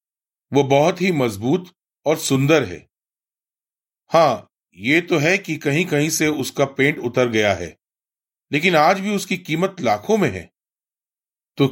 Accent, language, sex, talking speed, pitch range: native, Hindi, male, 150 wpm, 115-155 Hz